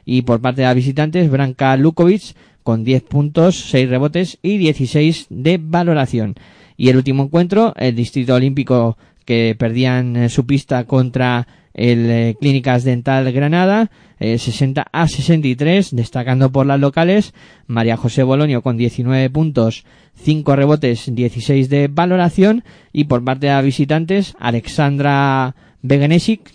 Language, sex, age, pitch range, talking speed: Spanish, male, 20-39, 125-160 Hz, 135 wpm